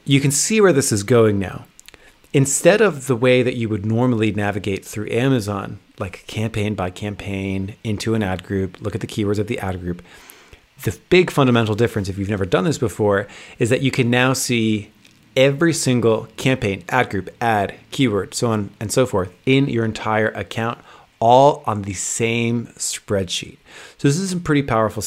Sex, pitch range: male, 105-130 Hz